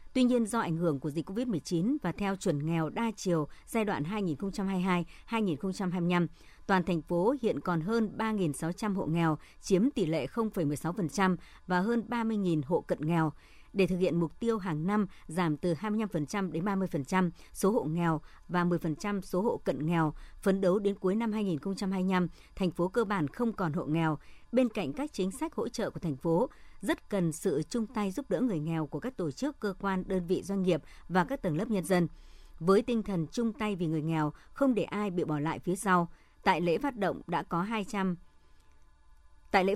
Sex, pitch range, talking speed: male, 165-210 Hz, 200 wpm